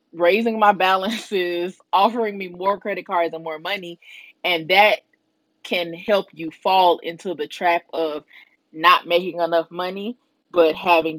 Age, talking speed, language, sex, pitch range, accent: 20-39, 145 wpm, English, female, 165-270 Hz, American